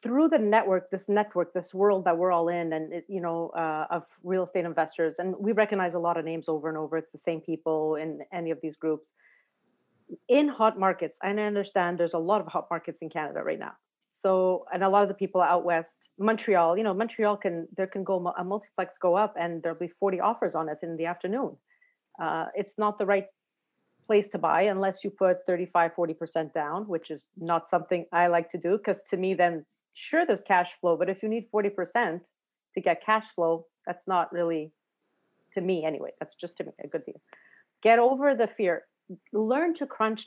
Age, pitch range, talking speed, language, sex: 30-49, 170-205 Hz, 215 wpm, English, female